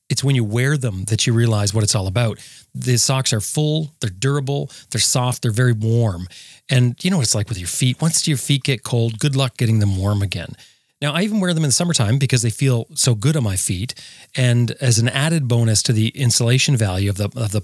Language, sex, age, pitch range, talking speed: English, male, 30-49, 110-135 Hz, 245 wpm